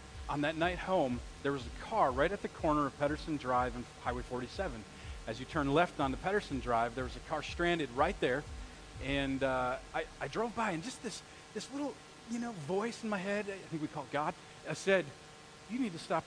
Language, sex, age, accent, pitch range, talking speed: English, male, 30-49, American, 130-180 Hz, 230 wpm